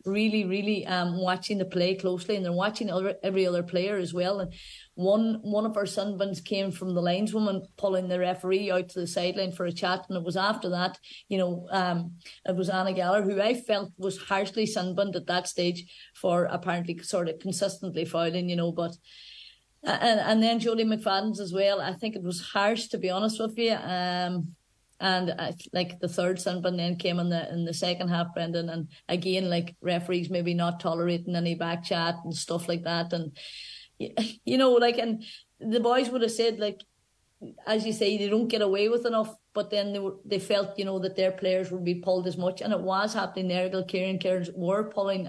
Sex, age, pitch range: female, 30-49, 175-205 Hz